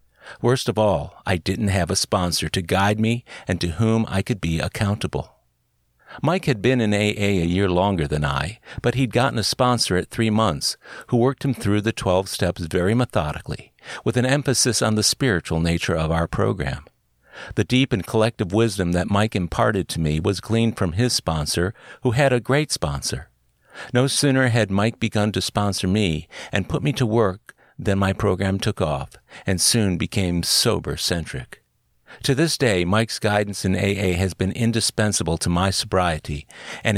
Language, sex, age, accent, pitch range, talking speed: English, male, 50-69, American, 90-115 Hz, 180 wpm